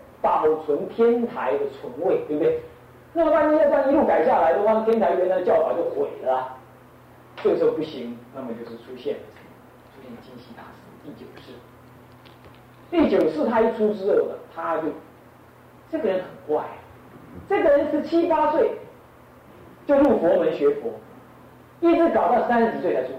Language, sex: Chinese, male